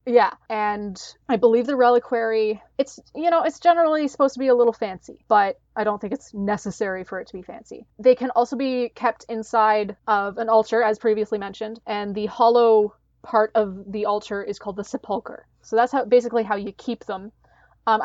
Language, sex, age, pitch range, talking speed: English, female, 20-39, 210-245 Hz, 195 wpm